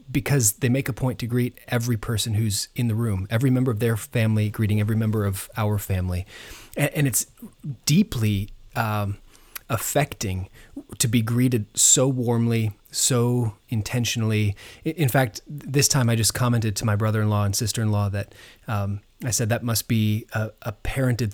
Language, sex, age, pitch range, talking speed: English, male, 30-49, 105-125 Hz, 165 wpm